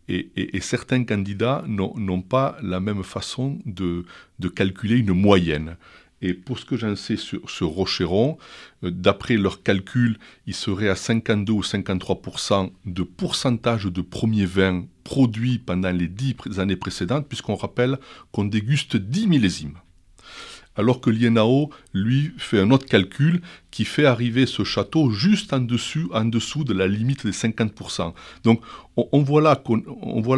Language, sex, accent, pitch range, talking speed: French, male, French, 95-125 Hz, 160 wpm